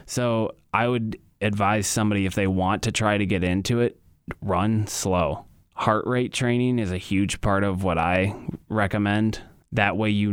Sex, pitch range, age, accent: male, 95-110 Hz, 20-39, American